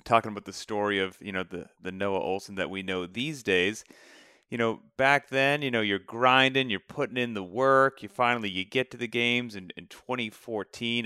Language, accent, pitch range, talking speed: English, American, 110-135 Hz, 215 wpm